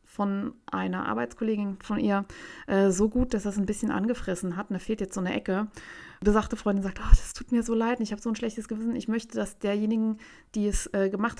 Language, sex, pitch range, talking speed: German, female, 195-235 Hz, 230 wpm